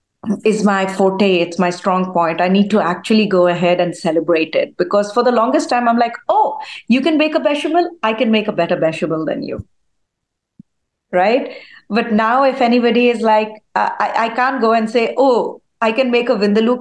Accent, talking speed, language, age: Indian, 200 wpm, English, 30-49